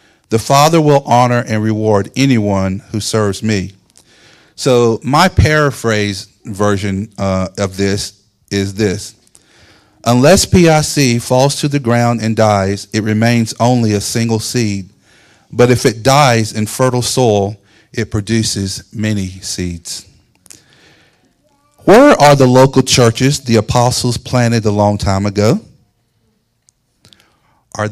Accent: American